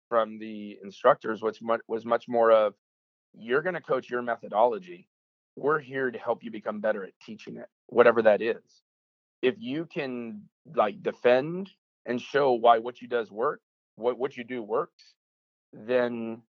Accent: American